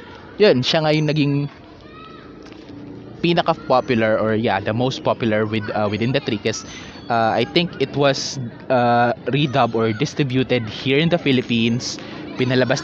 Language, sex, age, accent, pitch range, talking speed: Filipino, male, 20-39, native, 115-155 Hz, 140 wpm